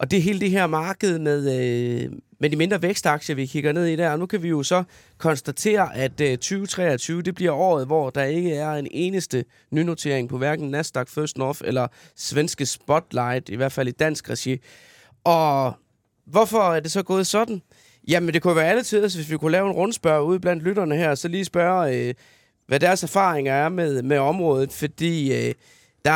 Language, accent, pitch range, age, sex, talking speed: Danish, native, 135-175 Hz, 20-39, male, 200 wpm